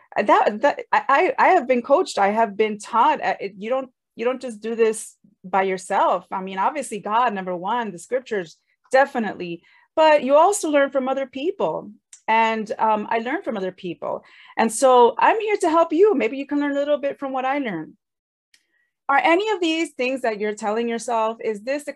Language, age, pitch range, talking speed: English, 30-49, 195-270 Hz, 200 wpm